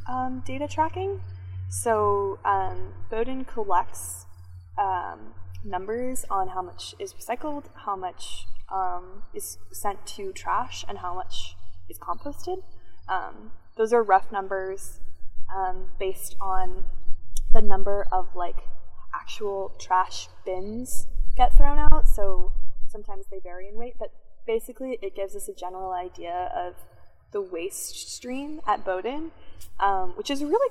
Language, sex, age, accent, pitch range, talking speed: English, female, 20-39, American, 180-235 Hz, 130 wpm